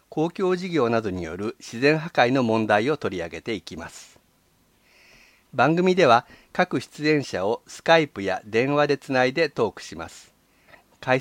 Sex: male